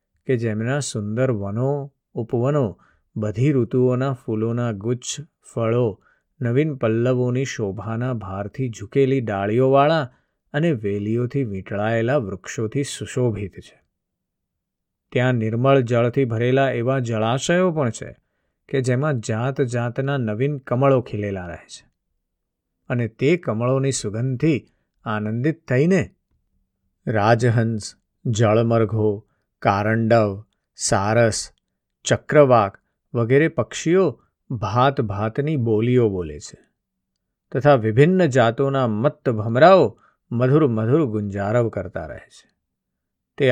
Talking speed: 90 wpm